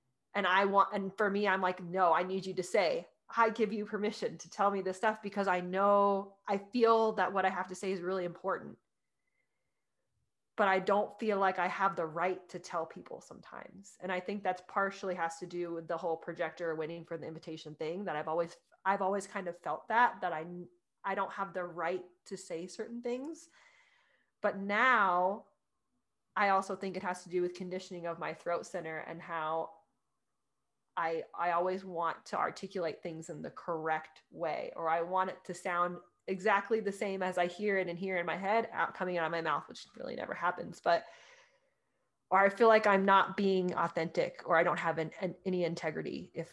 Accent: American